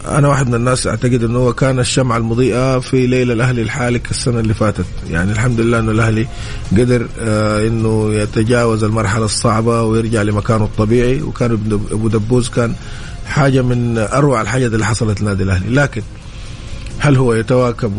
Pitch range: 110-125 Hz